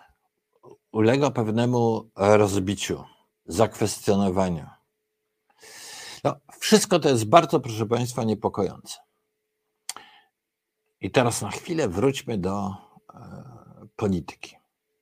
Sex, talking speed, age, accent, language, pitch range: male, 75 wpm, 50-69, native, Polish, 95-145 Hz